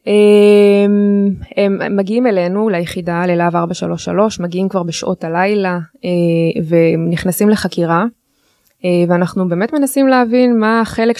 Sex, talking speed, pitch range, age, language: female, 100 wpm, 180-220 Hz, 20-39, Hebrew